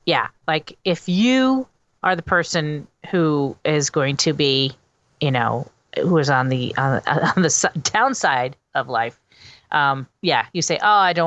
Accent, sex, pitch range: American, female, 140-180 Hz